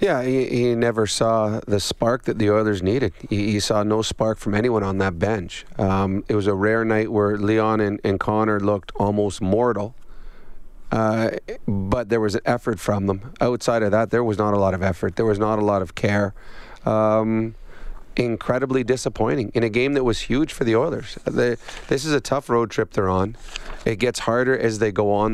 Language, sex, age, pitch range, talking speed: English, male, 30-49, 105-120 Hz, 205 wpm